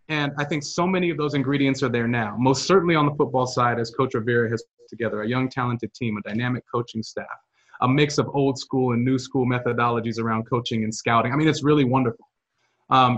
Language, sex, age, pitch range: English, male, 30-49, 125-150 Hz